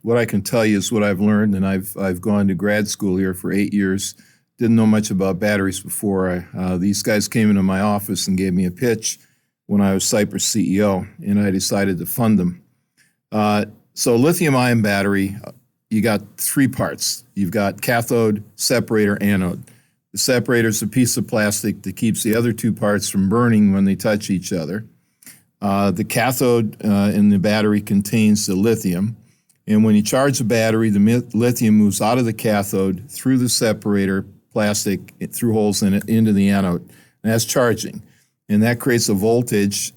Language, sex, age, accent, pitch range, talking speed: English, male, 50-69, American, 100-120 Hz, 185 wpm